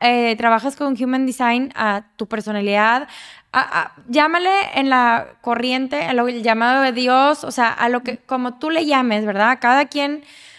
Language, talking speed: English, 165 wpm